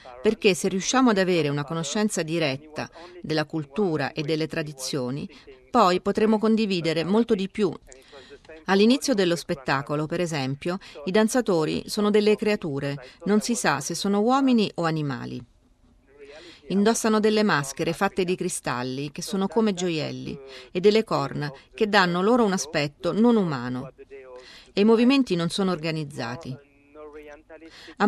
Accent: native